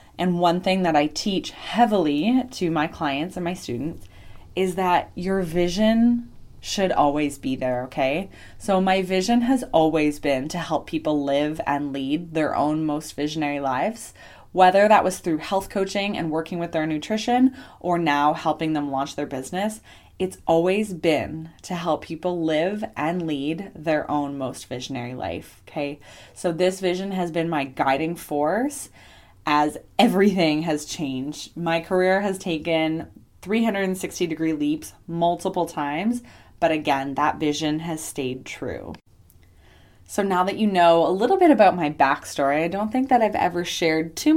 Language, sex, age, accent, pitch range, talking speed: English, female, 20-39, American, 145-190 Hz, 160 wpm